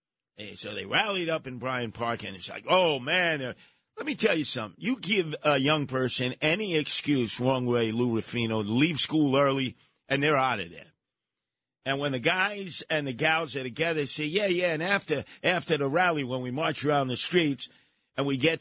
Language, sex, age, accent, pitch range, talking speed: English, male, 50-69, American, 125-155 Hz, 205 wpm